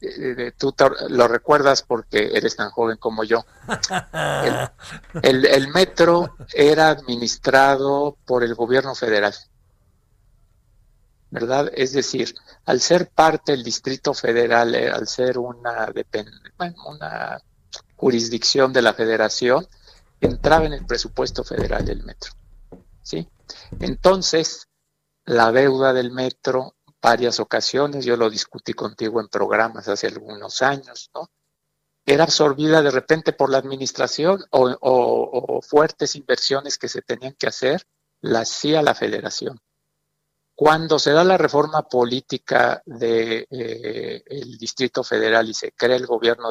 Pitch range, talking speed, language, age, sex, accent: 120-150 Hz, 125 wpm, Spanish, 60-79, male, Mexican